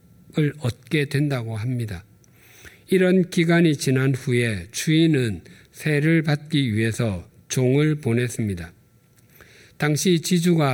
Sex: male